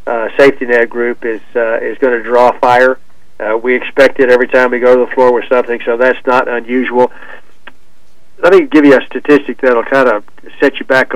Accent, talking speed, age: American, 210 wpm, 50-69